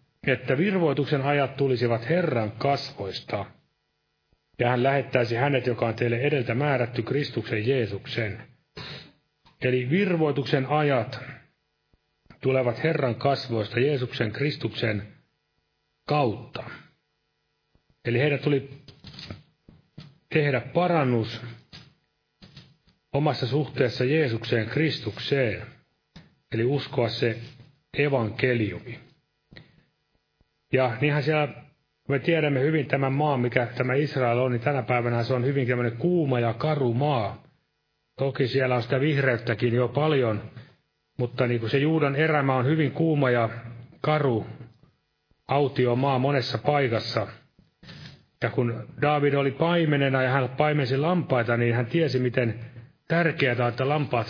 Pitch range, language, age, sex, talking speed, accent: 120-145 Hz, Finnish, 40-59, male, 110 wpm, native